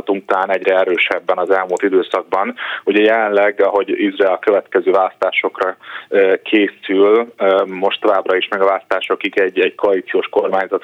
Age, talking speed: 30-49, 135 wpm